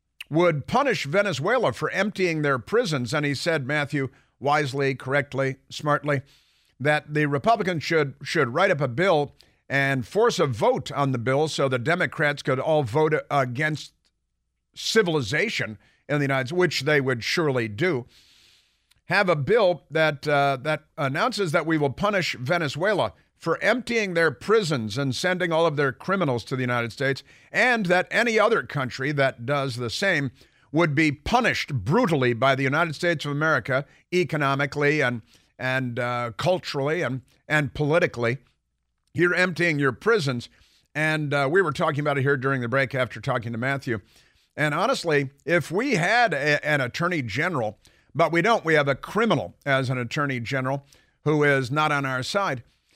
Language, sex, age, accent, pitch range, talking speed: English, male, 50-69, American, 130-160 Hz, 165 wpm